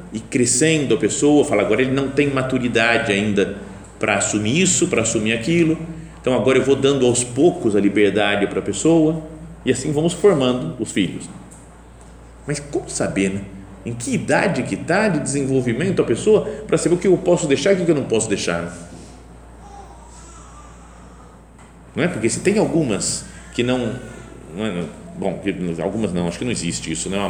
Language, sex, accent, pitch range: Portuguese, male, Brazilian, 100-160 Hz